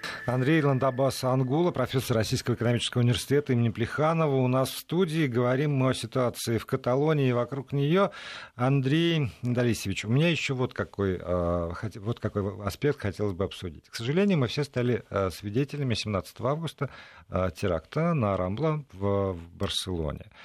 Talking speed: 140 wpm